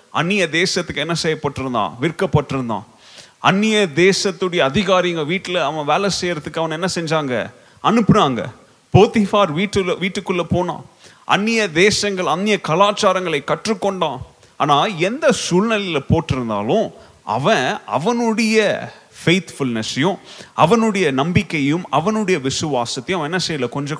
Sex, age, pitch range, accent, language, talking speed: male, 30-49, 145-200 Hz, native, Tamil, 95 wpm